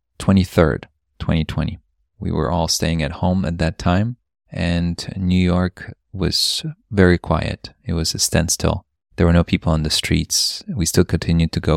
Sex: male